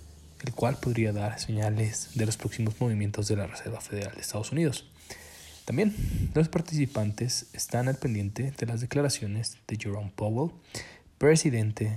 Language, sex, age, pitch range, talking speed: Spanish, male, 20-39, 105-130 Hz, 145 wpm